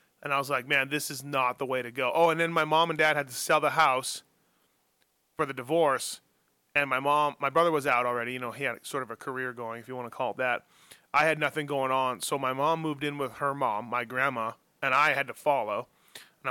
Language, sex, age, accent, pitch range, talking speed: English, male, 30-49, American, 130-150 Hz, 260 wpm